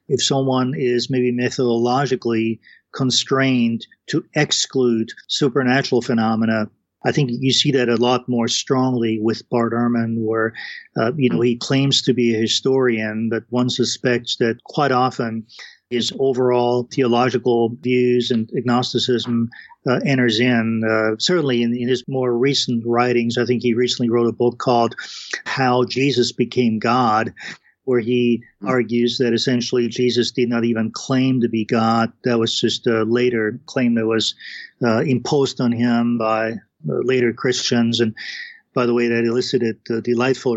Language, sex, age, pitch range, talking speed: English, male, 40-59, 115-125 Hz, 150 wpm